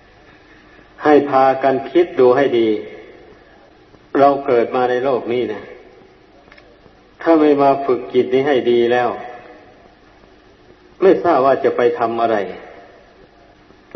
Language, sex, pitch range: Thai, male, 120-145 Hz